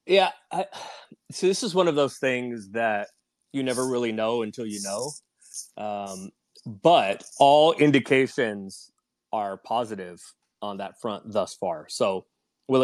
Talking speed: 135 wpm